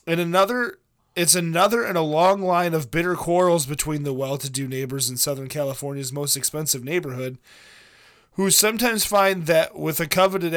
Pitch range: 140-175 Hz